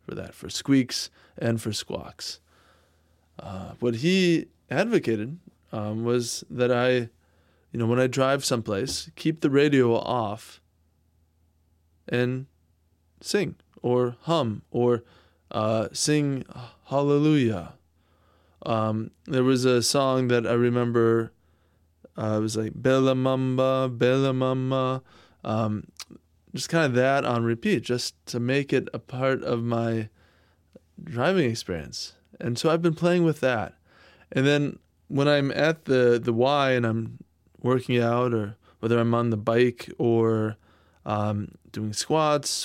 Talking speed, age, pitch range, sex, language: 130 wpm, 20-39, 100-130 Hz, male, English